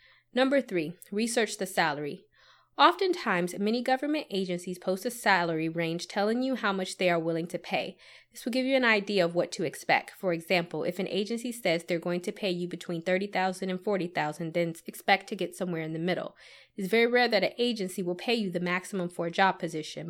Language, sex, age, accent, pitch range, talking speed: English, female, 20-39, American, 175-210 Hz, 210 wpm